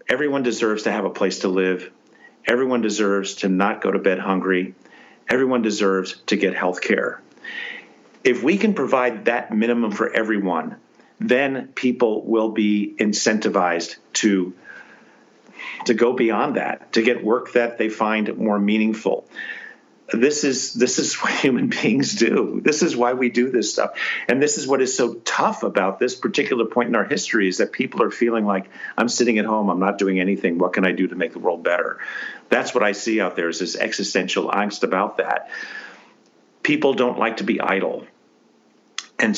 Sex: male